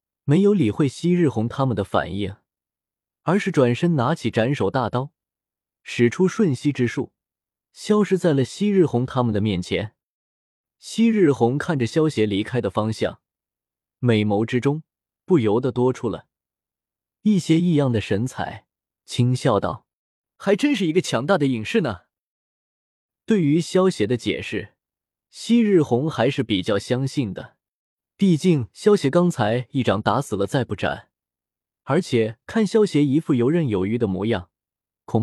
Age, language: 20-39, Chinese